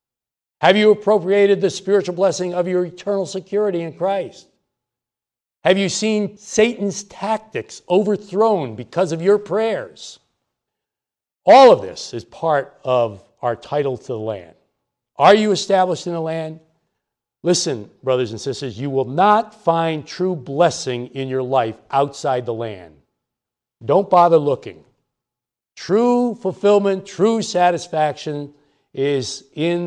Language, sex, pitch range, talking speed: English, male, 125-190 Hz, 130 wpm